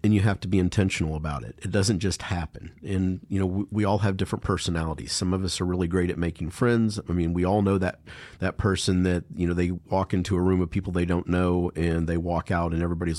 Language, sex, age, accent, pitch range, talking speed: English, male, 50-69, American, 90-105 Hz, 260 wpm